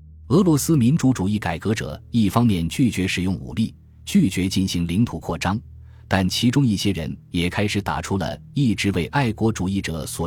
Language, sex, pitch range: Chinese, male, 85-120 Hz